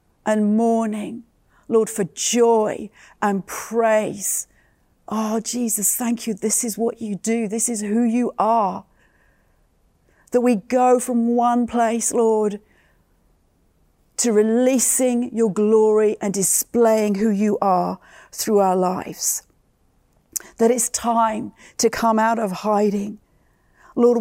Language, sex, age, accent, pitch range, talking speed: English, female, 40-59, British, 210-240 Hz, 120 wpm